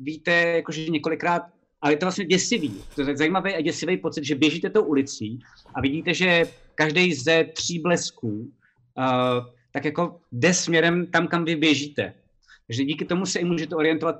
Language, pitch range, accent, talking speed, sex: Czech, 130-165 Hz, native, 180 wpm, male